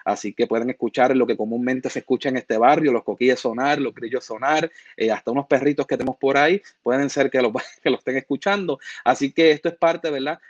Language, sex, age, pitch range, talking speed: Spanish, male, 30-49, 120-145 Hz, 230 wpm